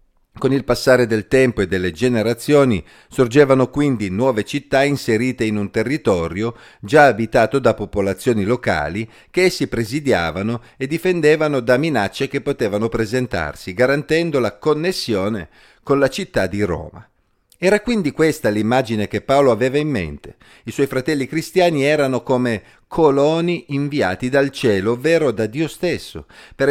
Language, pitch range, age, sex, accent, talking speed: Italian, 110-145 Hz, 50-69, male, native, 140 wpm